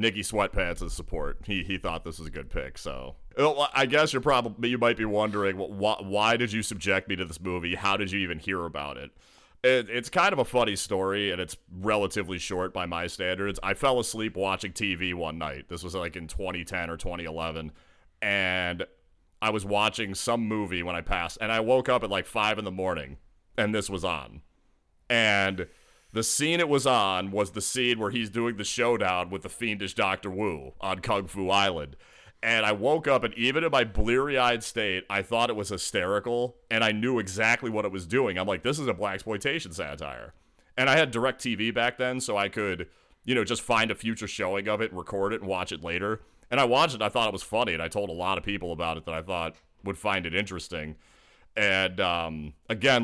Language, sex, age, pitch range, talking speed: English, male, 30-49, 90-110 Hz, 225 wpm